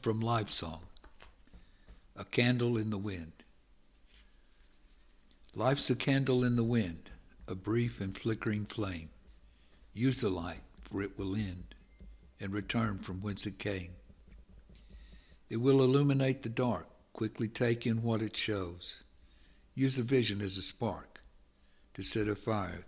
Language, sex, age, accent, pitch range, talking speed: English, male, 60-79, American, 85-115 Hz, 140 wpm